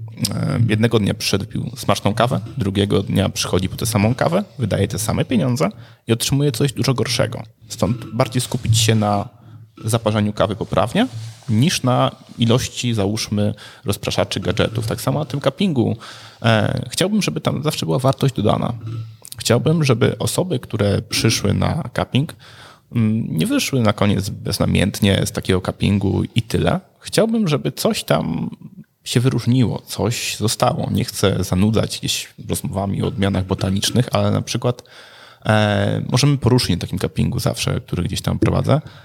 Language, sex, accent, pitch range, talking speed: Polish, male, native, 100-130 Hz, 145 wpm